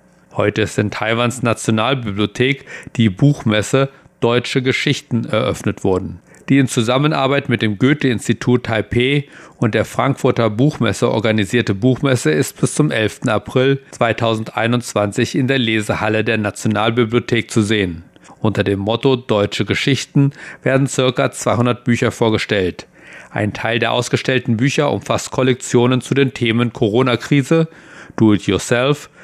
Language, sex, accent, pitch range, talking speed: German, male, German, 110-135 Hz, 120 wpm